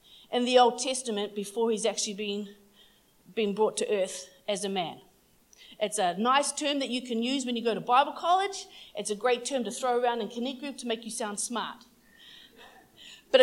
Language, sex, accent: English, female, Australian